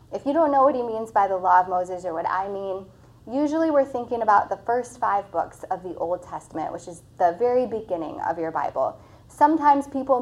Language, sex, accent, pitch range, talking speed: English, female, American, 185-255 Hz, 225 wpm